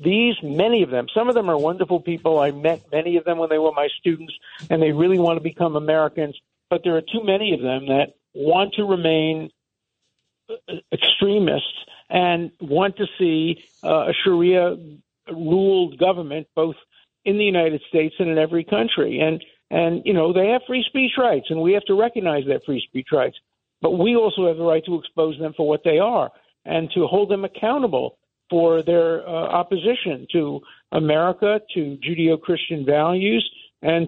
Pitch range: 155-190 Hz